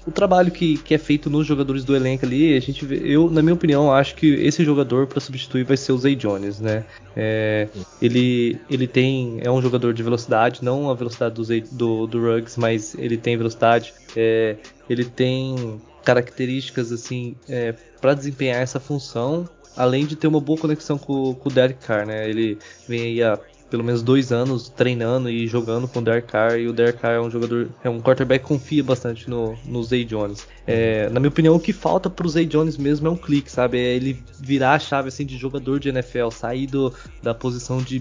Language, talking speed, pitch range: Portuguese, 210 wpm, 115-135 Hz